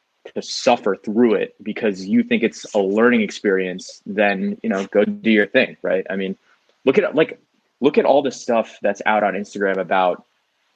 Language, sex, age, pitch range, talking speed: English, male, 20-39, 100-120 Hz, 190 wpm